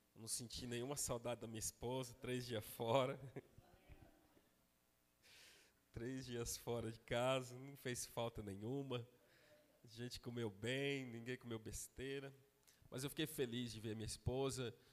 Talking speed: 135 wpm